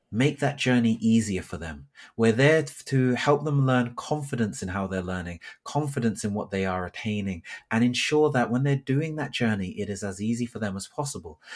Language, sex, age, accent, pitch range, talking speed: English, male, 30-49, British, 95-125 Hz, 200 wpm